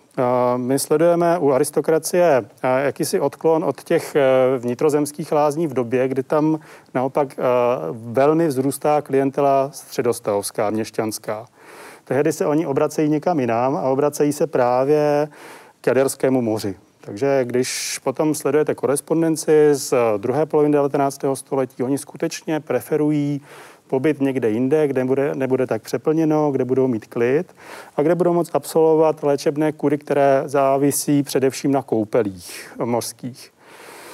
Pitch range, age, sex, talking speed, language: 130-155 Hz, 40-59, male, 125 wpm, Czech